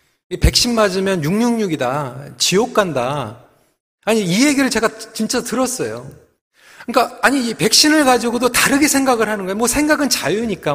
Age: 40-59